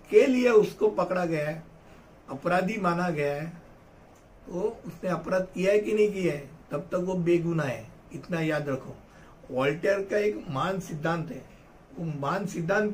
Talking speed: 170 wpm